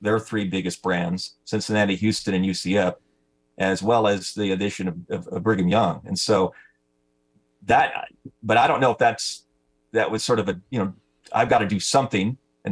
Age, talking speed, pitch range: 30-49, 190 wpm, 90-115 Hz